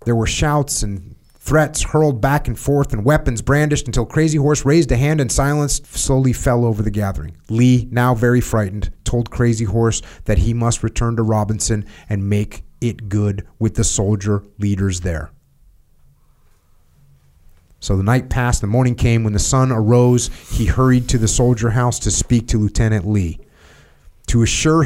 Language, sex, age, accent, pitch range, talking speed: English, male, 30-49, American, 100-125 Hz, 170 wpm